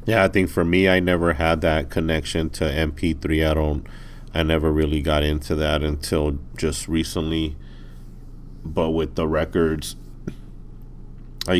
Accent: American